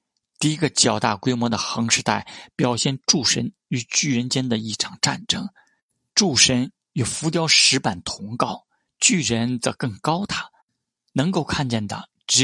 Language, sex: Chinese, male